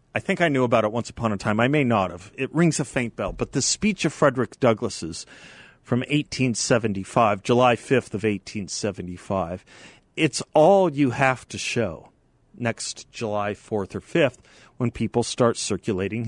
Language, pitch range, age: English, 105-135 Hz, 40-59